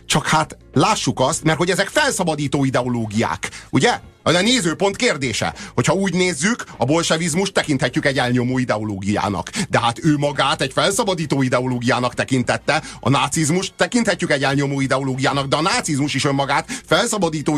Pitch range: 130-165 Hz